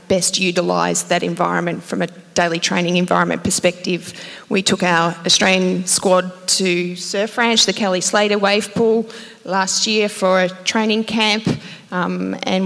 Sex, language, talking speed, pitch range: female, English, 145 wpm, 185-210 Hz